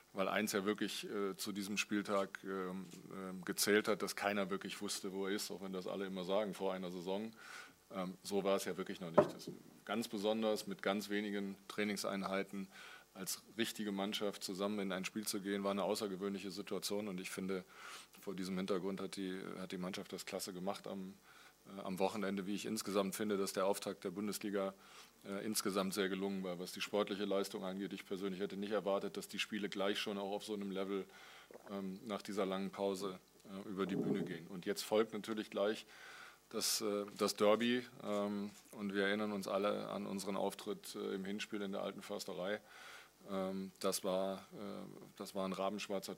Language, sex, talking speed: German, male, 190 wpm